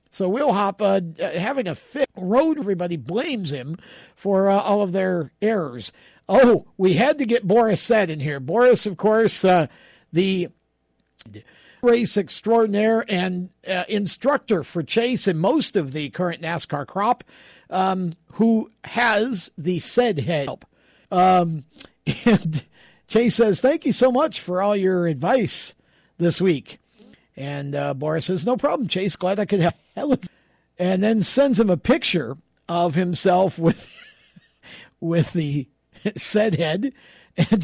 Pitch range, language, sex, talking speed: 170-230 Hz, English, male, 145 wpm